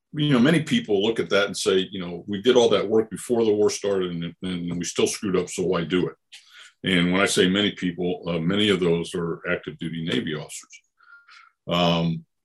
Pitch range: 85-115 Hz